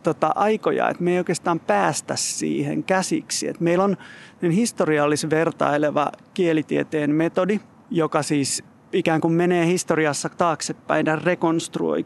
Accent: native